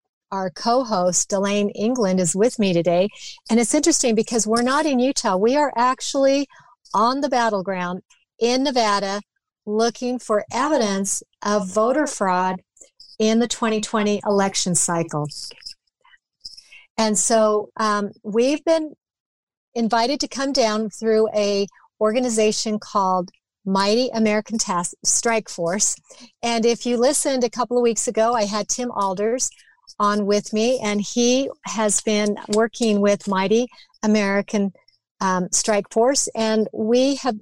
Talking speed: 135 wpm